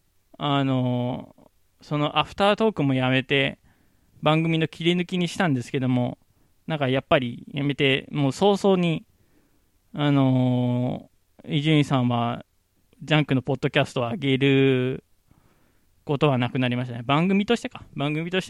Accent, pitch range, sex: native, 125-165 Hz, male